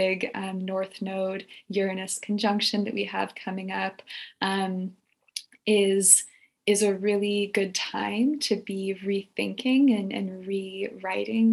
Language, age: English, 20-39